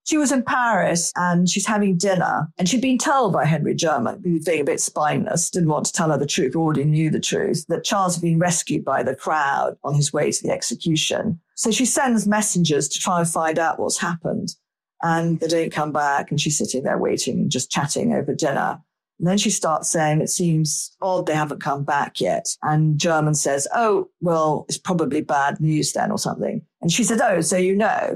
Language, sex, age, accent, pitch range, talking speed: English, female, 40-59, British, 160-215 Hz, 220 wpm